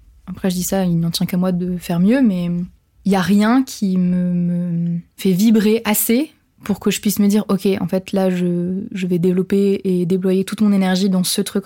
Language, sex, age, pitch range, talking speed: French, female, 20-39, 185-210 Hz, 235 wpm